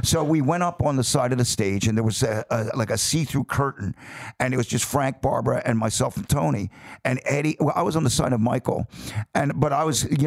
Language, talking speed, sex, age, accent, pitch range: English, 255 wpm, male, 50-69, American, 115-150 Hz